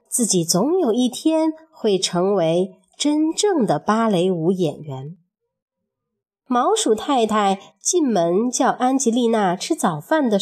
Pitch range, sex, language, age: 200-325 Hz, female, Chinese, 30-49